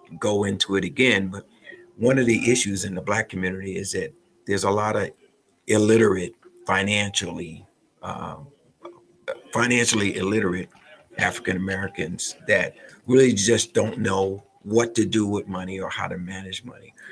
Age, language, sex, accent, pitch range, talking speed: 50-69, English, male, American, 100-120 Hz, 140 wpm